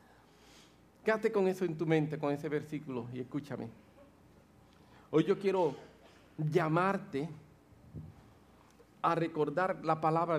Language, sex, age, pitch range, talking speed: English, male, 50-69, 110-160 Hz, 110 wpm